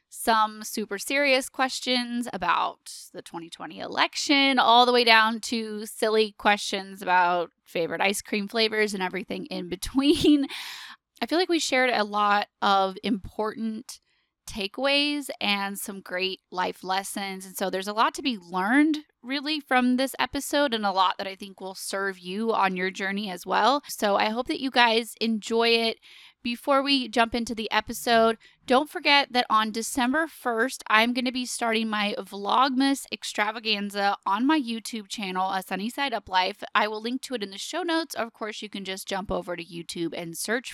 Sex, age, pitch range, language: female, 10-29, 200-255 Hz, English